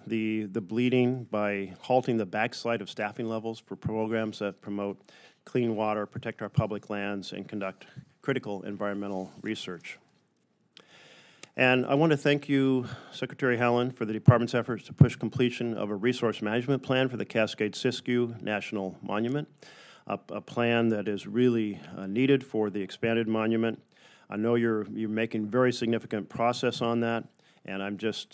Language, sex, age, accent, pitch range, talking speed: English, male, 40-59, American, 105-125 Hz, 160 wpm